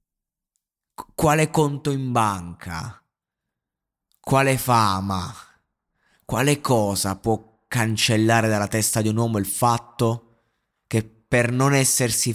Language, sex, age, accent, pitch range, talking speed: Italian, male, 20-39, native, 105-120 Hz, 100 wpm